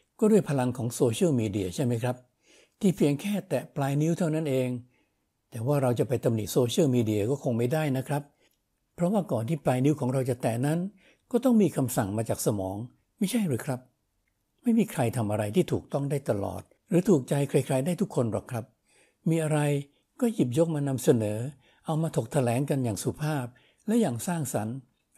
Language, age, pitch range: Thai, 60-79, 120-165 Hz